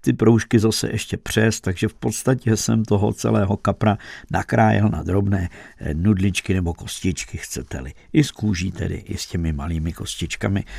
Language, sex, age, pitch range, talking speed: Czech, male, 50-69, 100-110 Hz, 150 wpm